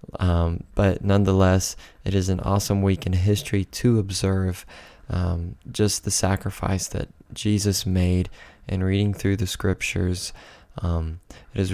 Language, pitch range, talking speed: English, 90-100 Hz, 140 wpm